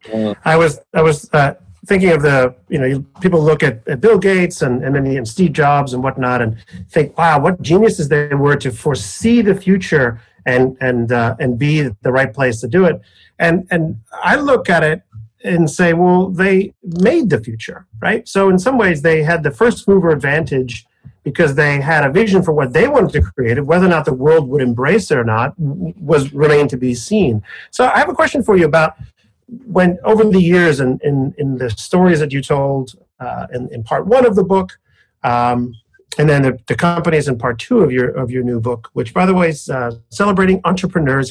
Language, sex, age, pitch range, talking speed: English, male, 40-59, 130-180 Hz, 215 wpm